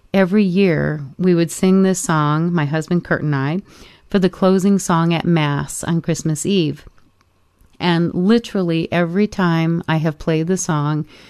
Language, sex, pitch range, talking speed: English, female, 160-185 Hz, 160 wpm